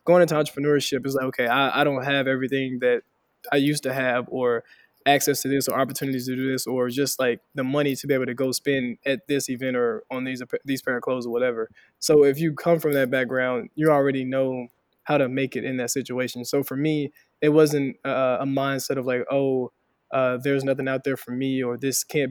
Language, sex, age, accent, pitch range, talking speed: English, male, 20-39, American, 125-140 Hz, 230 wpm